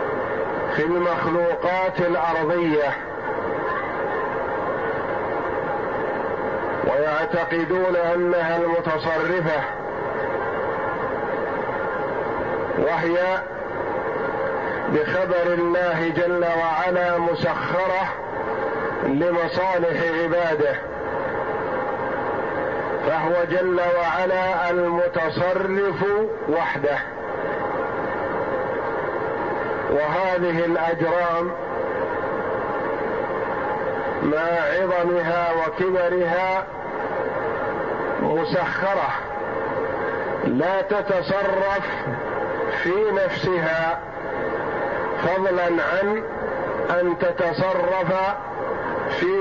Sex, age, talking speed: male, 50-69, 40 wpm